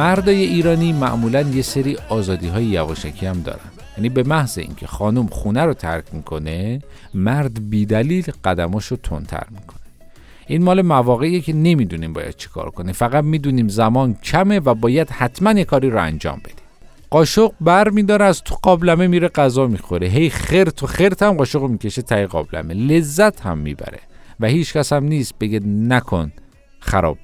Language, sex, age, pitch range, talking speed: Persian, male, 50-69, 95-155 Hz, 165 wpm